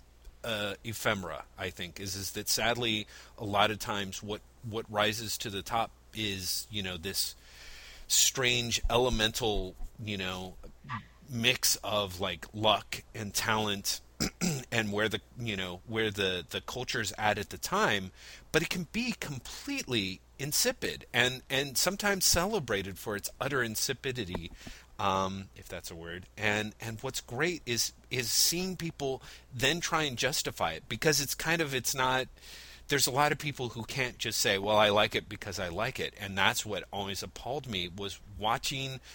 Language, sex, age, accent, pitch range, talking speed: English, male, 30-49, American, 95-125 Hz, 175 wpm